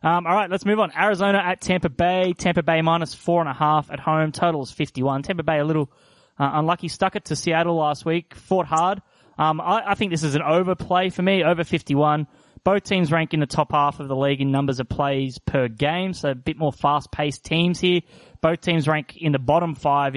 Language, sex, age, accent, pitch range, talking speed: English, male, 20-39, Australian, 130-160 Hz, 230 wpm